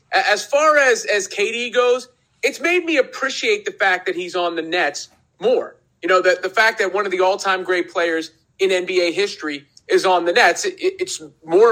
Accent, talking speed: American, 205 wpm